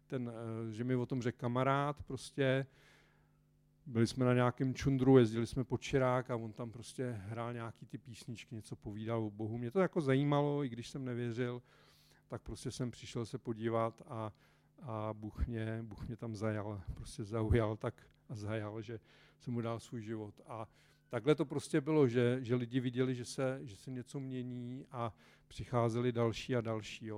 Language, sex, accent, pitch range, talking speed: Czech, male, native, 115-135 Hz, 175 wpm